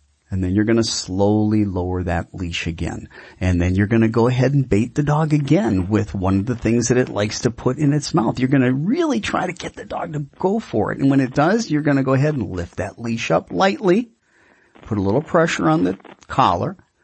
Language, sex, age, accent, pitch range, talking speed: English, male, 40-59, American, 105-155 Hz, 245 wpm